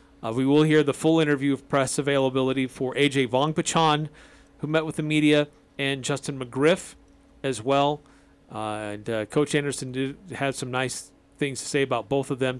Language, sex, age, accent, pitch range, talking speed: English, male, 40-59, American, 130-155 Hz, 190 wpm